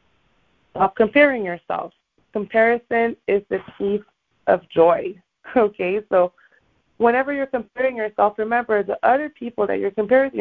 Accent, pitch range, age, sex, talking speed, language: American, 185-255 Hz, 20-39, female, 125 wpm, English